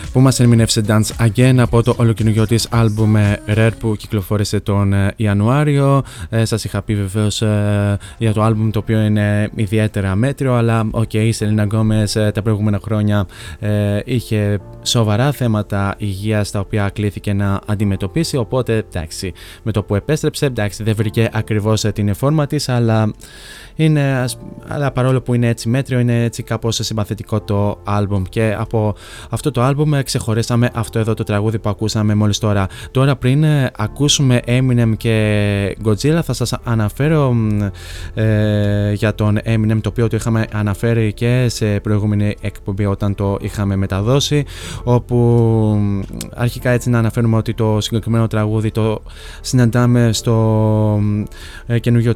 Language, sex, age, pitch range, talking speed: Greek, male, 20-39, 105-120 Hz, 145 wpm